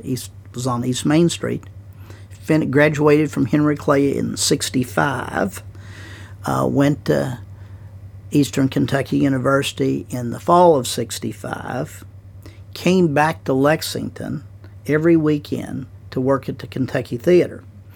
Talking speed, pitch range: 120 wpm, 100-140 Hz